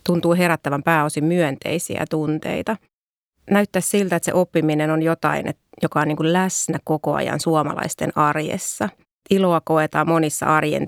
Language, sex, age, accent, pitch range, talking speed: Finnish, female, 30-49, native, 155-175 Hz, 140 wpm